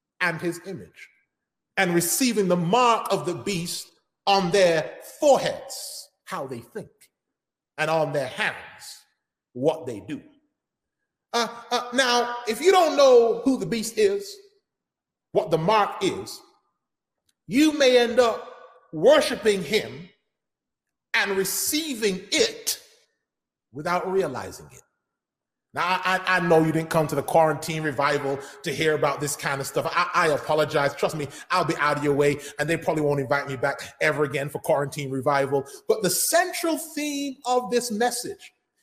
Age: 40-59